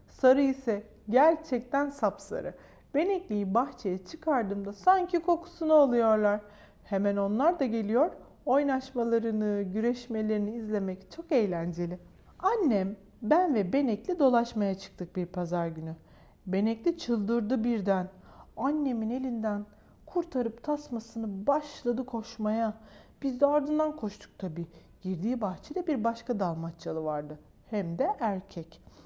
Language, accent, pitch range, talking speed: Turkish, native, 200-280 Hz, 105 wpm